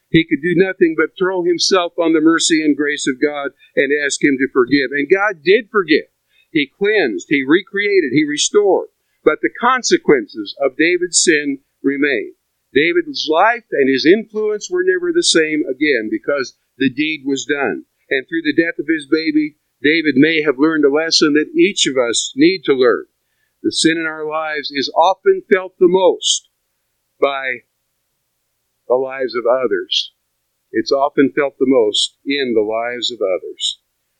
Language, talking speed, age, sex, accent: English, 170 wpm, 50-69, male, American